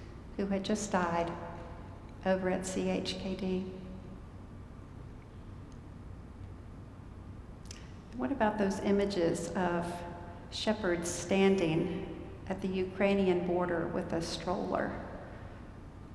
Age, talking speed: 60-79, 80 wpm